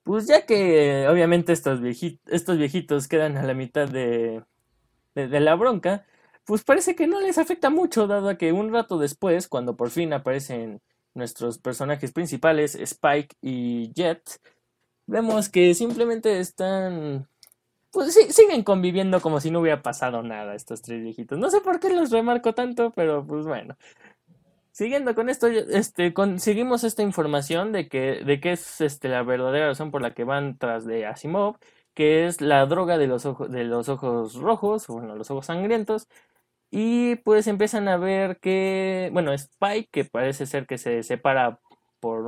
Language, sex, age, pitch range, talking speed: Spanish, male, 20-39, 135-205 Hz, 170 wpm